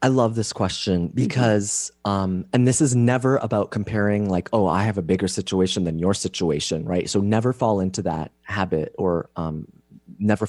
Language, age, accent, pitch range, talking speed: English, 30-49, American, 90-120 Hz, 185 wpm